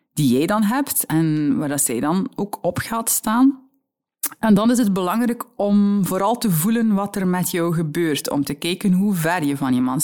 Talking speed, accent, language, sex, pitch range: 205 wpm, Dutch, Dutch, female, 170-245 Hz